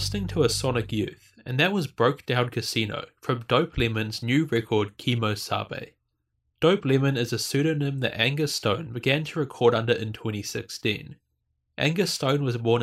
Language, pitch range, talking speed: English, 110-140 Hz, 165 wpm